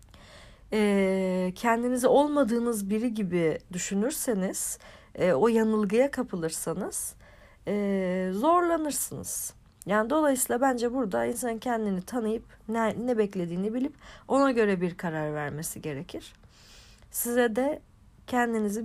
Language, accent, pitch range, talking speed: Turkish, native, 180-235 Hz, 100 wpm